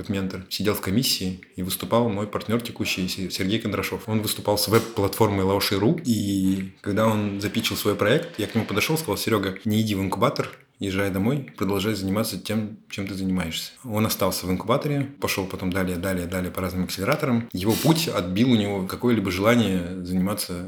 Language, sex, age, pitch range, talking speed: Russian, male, 20-39, 95-110 Hz, 175 wpm